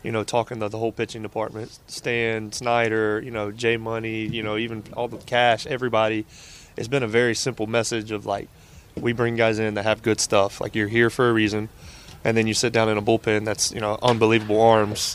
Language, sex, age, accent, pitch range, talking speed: English, male, 20-39, American, 105-115 Hz, 220 wpm